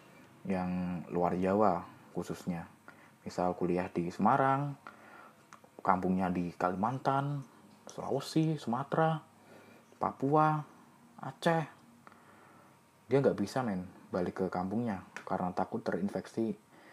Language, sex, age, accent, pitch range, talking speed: Indonesian, male, 20-39, native, 90-120 Hz, 90 wpm